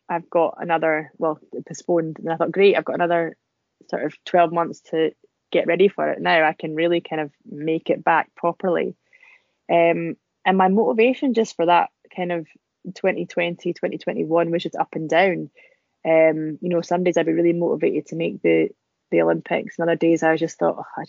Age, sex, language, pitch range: 20-39, female, English, 155-175 Hz